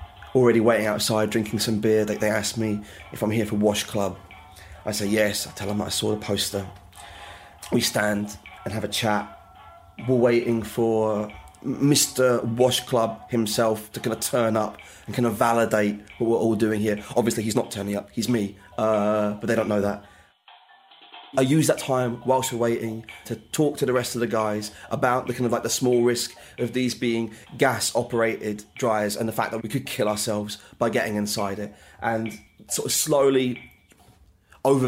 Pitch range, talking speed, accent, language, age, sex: 105-120 Hz, 190 wpm, British, English, 20-39, male